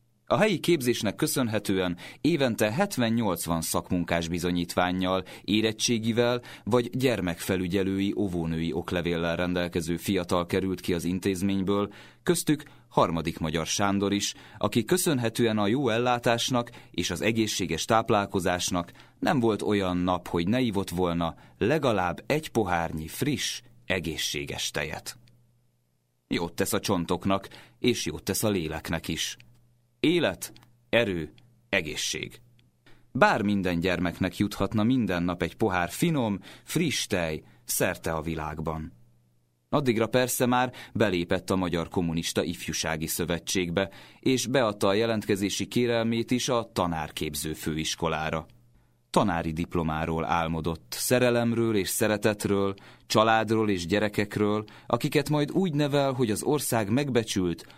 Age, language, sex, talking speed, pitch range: 30-49, Hungarian, male, 115 wpm, 85-120 Hz